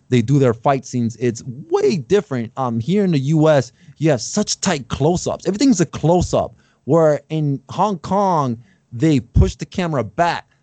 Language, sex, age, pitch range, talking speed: English, male, 20-39, 125-170 Hz, 170 wpm